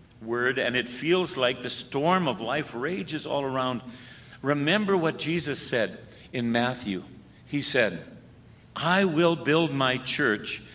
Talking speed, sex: 140 wpm, male